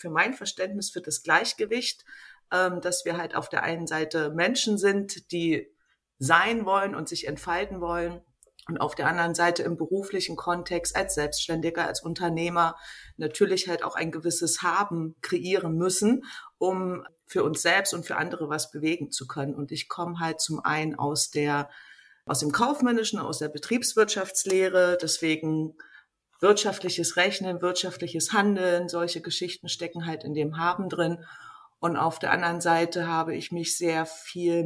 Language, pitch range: German, 155-185 Hz